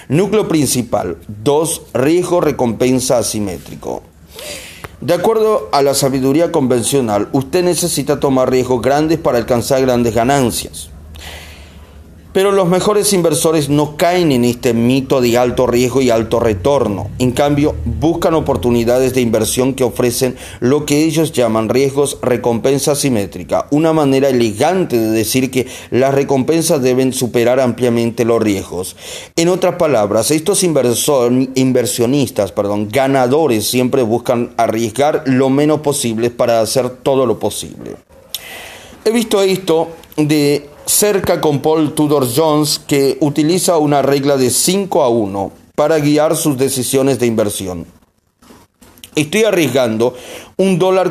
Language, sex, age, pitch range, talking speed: Spanish, male, 30-49, 120-155 Hz, 130 wpm